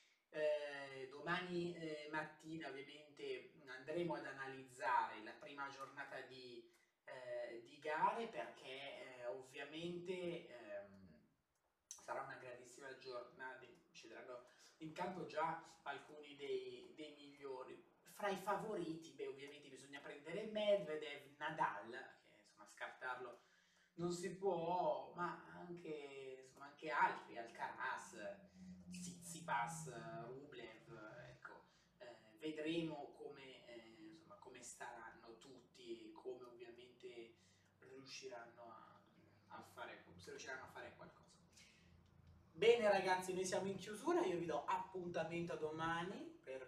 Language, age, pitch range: Italian, 30-49, 140-190 Hz